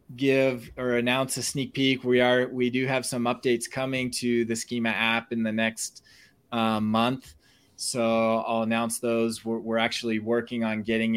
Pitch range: 110-125 Hz